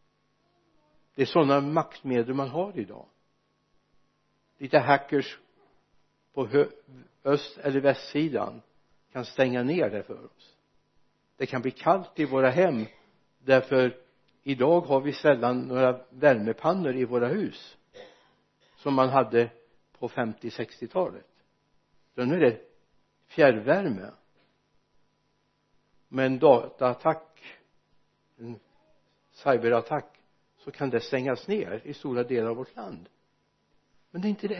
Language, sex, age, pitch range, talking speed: Swedish, male, 60-79, 135-180 Hz, 120 wpm